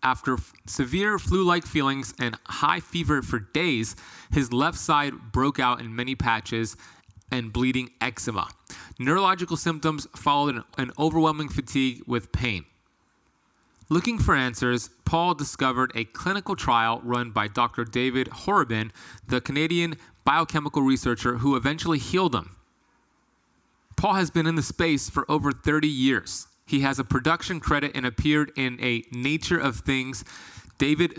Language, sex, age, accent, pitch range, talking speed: English, male, 30-49, American, 120-155 Hz, 140 wpm